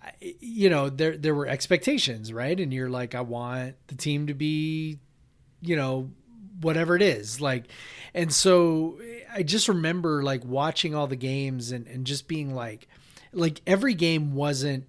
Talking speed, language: 165 wpm, English